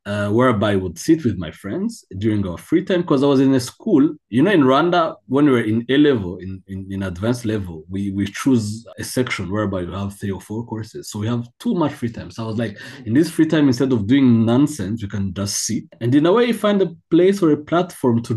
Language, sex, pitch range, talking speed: English, male, 110-140 Hz, 260 wpm